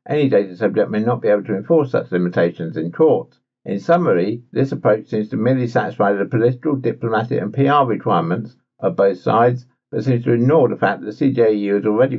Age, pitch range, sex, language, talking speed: 60-79, 105-135 Hz, male, English, 200 wpm